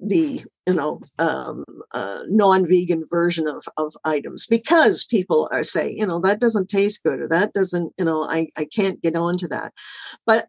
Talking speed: 190 wpm